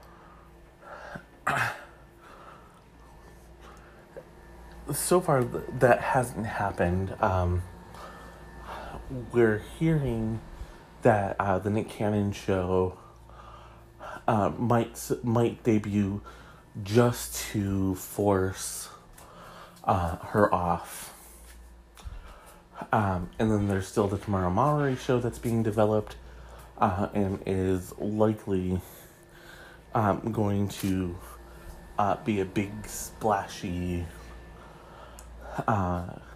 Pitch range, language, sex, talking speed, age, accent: 90-110 Hz, English, male, 80 wpm, 30-49, American